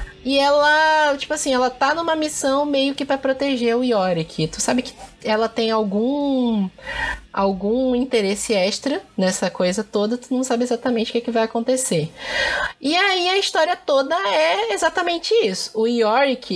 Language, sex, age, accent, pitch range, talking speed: Portuguese, female, 20-39, Brazilian, 220-275 Hz, 160 wpm